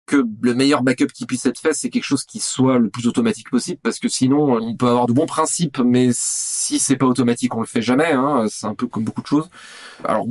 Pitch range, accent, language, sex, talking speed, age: 125-160 Hz, French, French, male, 255 wpm, 20-39